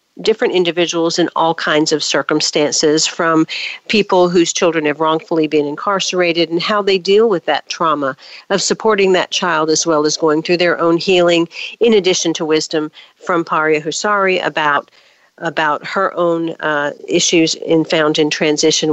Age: 50-69